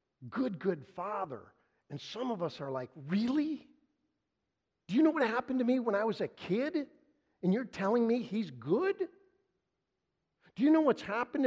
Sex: male